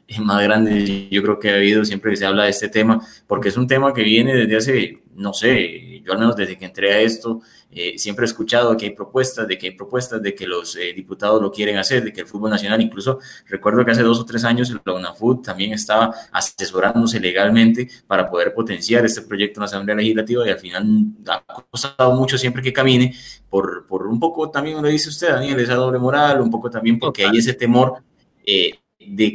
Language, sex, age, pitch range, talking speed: Spanish, male, 20-39, 105-125 Hz, 225 wpm